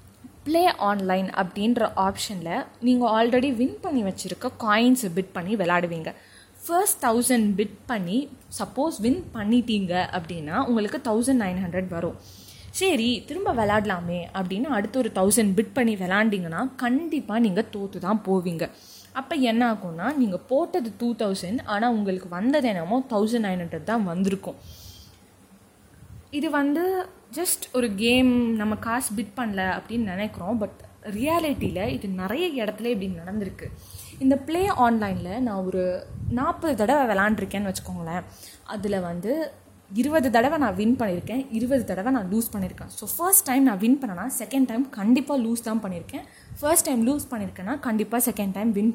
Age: 20-39